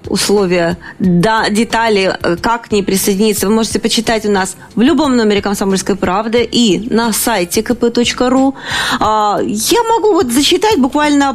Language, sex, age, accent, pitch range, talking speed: Russian, female, 30-49, native, 210-265 Hz, 135 wpm